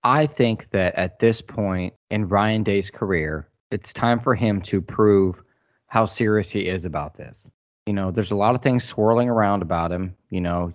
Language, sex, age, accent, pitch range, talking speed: English, male, 20-39, American, 95-120 Hz, 195 wpm